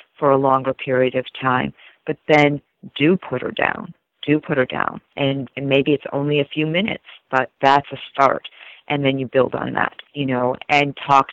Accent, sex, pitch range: American, female, 130-145 Hz